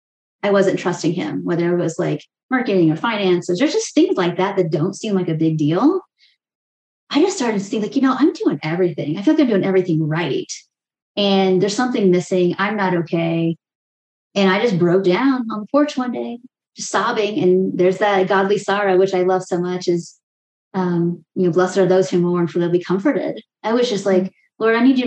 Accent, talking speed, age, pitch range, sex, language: American, 220 wpm, 20-39, 175-210 Hz, female, English